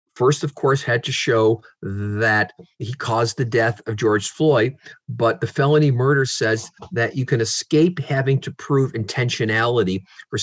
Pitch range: 105-135 Hz